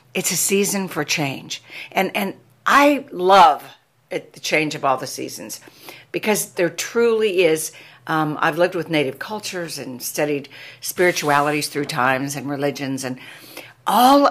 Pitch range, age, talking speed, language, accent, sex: 145-195 Hz, 60-79, 145 wpm, English, American, female